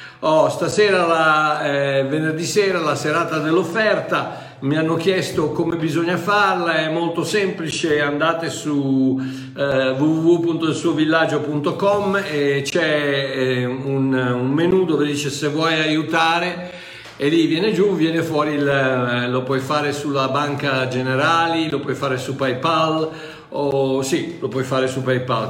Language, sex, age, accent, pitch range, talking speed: Italian, male, 50-69, native, 140-175 Hz, 140 wpm